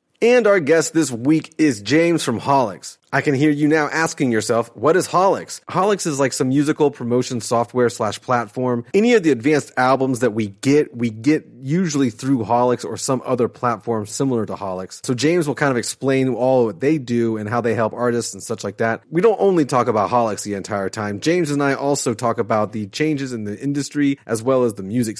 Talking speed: 220 wpm